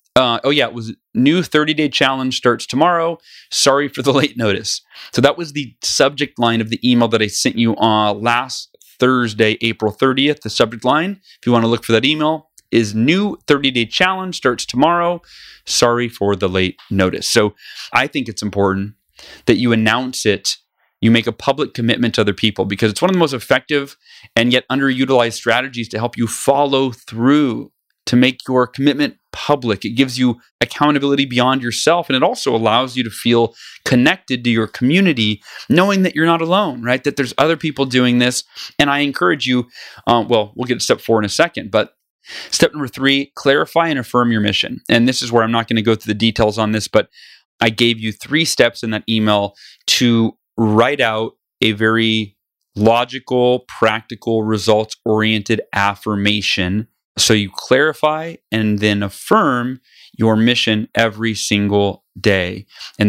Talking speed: 180 wpm